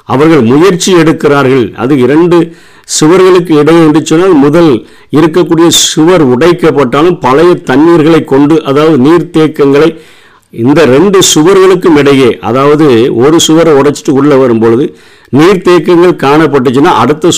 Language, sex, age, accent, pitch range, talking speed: Tamil, male, 50-69, native, 135-165 Hz, 105 wpm